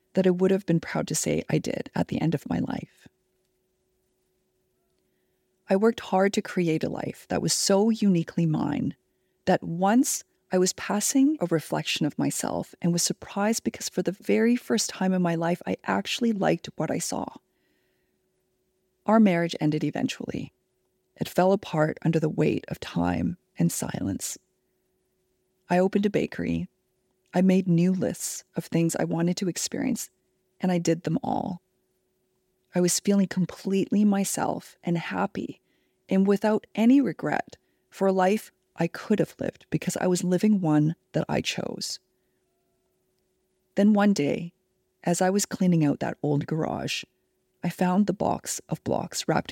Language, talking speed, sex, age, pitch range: English, 160 wpm, female, 30-49, 165-195 Hz